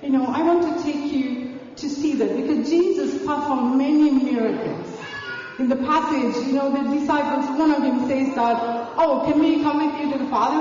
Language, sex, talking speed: English, female, 205 wpm